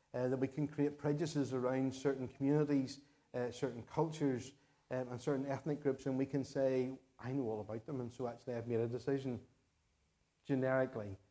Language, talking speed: English, 180 wpm